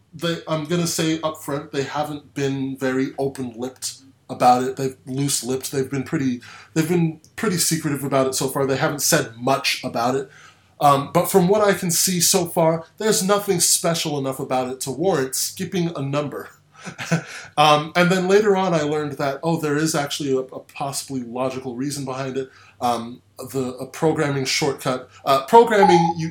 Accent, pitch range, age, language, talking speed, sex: American, 130-165 Hz, 20-39, English, 180 wpm, male